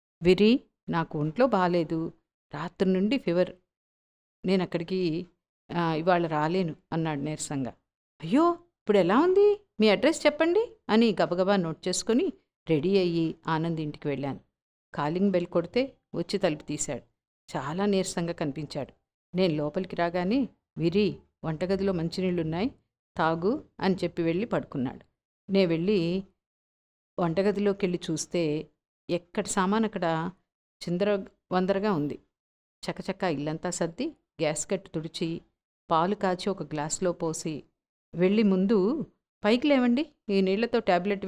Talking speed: 115 wpm